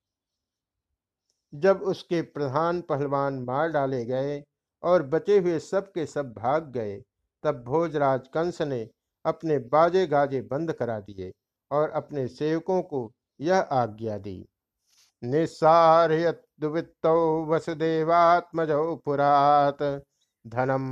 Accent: native